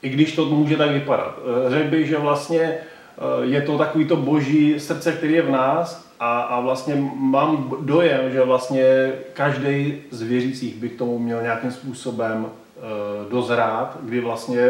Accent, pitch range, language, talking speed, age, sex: native, 125-145 Hz, Czech, 155 wpm, 30-49, male